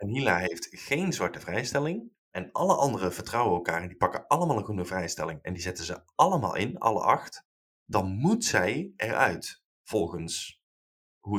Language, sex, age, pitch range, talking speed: Dutch, male, 20-39, 95-135 Hz, 170 wpm